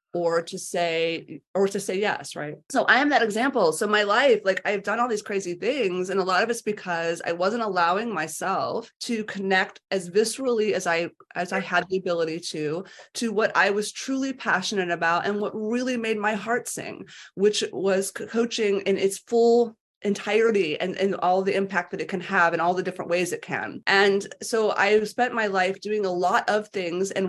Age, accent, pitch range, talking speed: 30-49, American, 190-255 Hz, 205 wpm